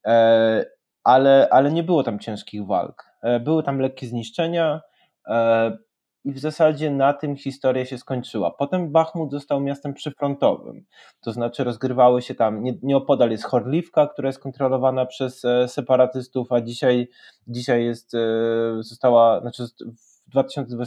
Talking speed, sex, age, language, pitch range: 130 wpm, male, 20-39, Polish, 115-135 Hz